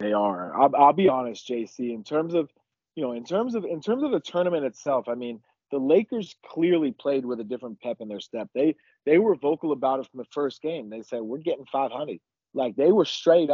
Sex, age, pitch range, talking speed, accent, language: male, 30-49, 115-155 Hz, 230 wpm, American, English